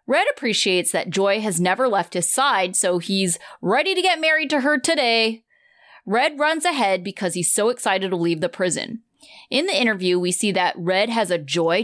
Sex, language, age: female, English, 30-49